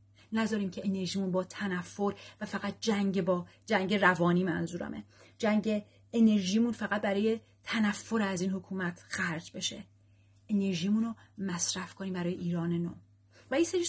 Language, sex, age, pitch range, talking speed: Persian, female, 30-49, 170-210 Hz, 140 wpm